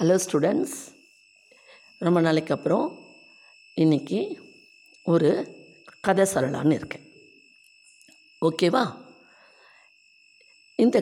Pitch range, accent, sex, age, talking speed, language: 170-235 Hz, native, female, 60-79, 65 wpm, Tamil